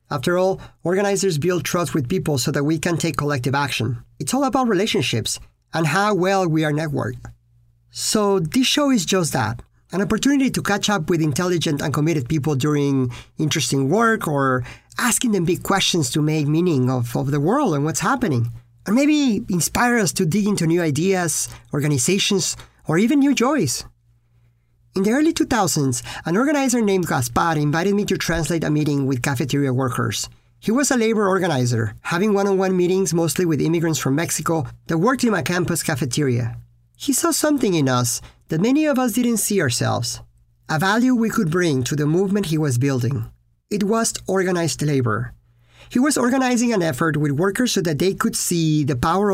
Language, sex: English, male